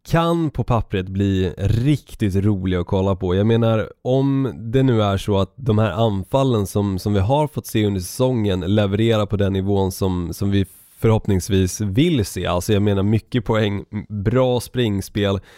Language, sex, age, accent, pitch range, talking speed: Swedish, male, 20-39, native, 95-115 Hz, 175 wpm